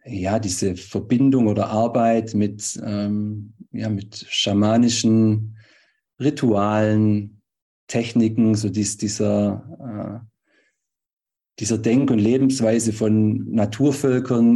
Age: 50-69